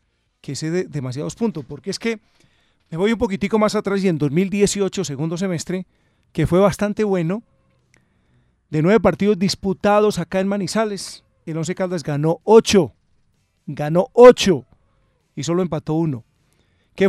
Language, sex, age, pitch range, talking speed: Spanish, male, 40-59, 150-195 Hz, 150 wpm